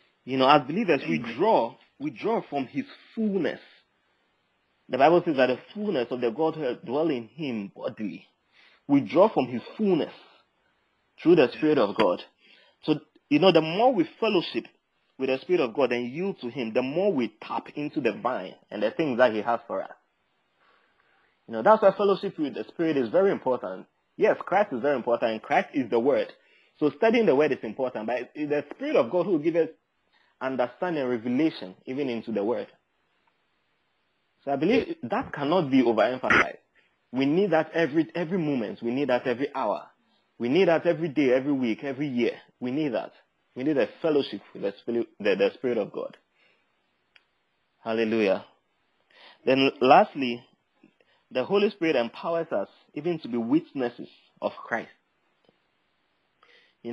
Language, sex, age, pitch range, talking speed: English, male, 30-49, 125-195 Hz, 170 wpm